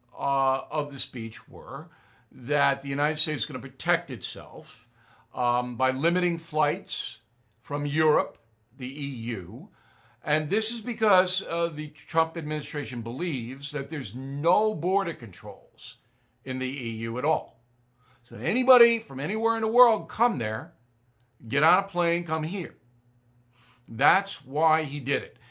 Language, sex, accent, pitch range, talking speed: English, male, American, 120-165 Hz, 145 wpm